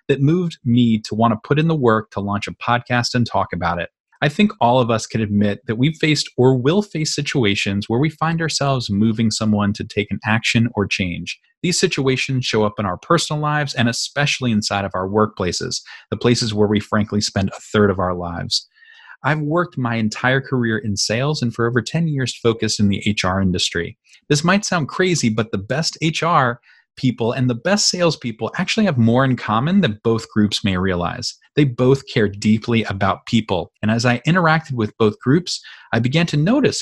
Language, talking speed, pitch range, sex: English, 205 wpm, 105-150 Hz, male